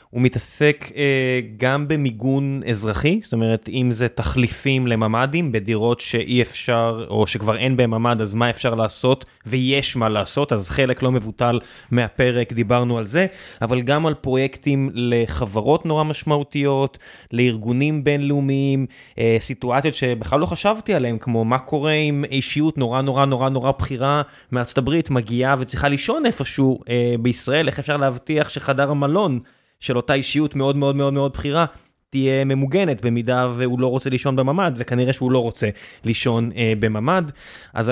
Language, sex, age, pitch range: Hebrew, male, 20-39, 120-145 Hz